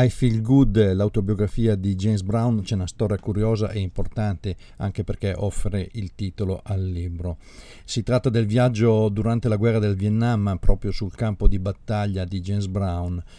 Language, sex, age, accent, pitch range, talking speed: Italian, male, 50-69, native, 95-110 Hz, 165 wpm